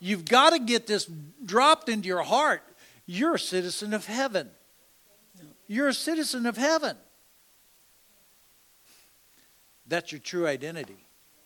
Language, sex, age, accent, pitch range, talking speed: English, male, 60-79, American, 155-200 Hz, 120 wpm